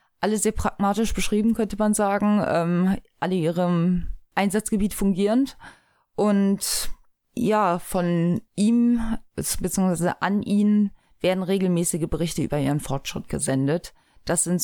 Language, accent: German, German